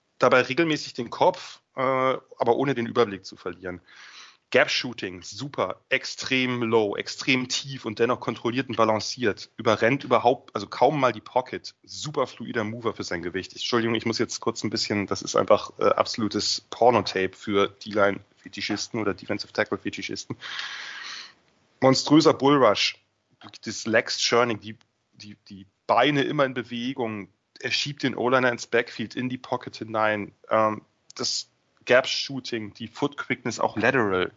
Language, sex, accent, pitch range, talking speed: German, male, German, 110-135 Hz, 135 wpm